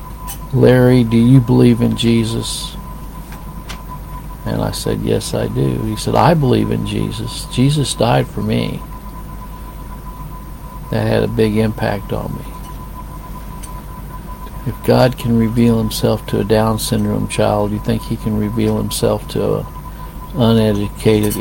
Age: 50-69